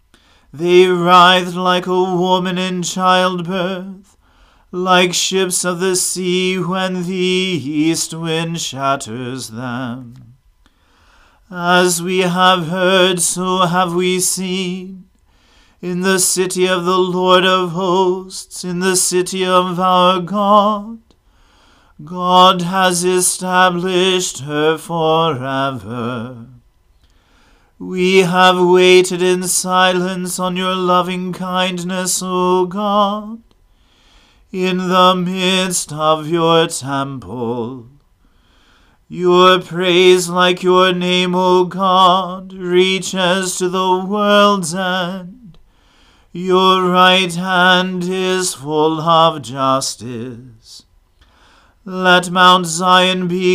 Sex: male